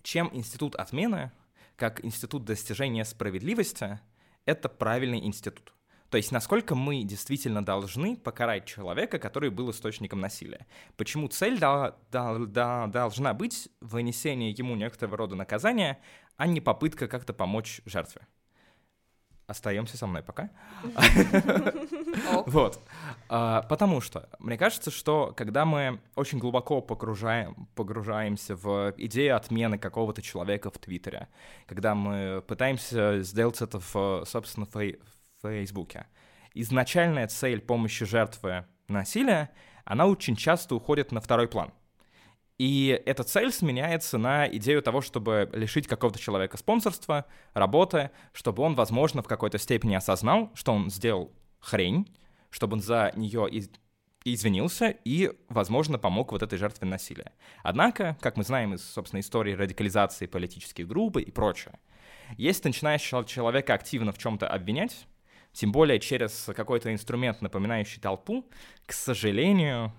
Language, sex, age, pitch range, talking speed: Russian, male, 20-39, 105-140 Hz, 125 wpm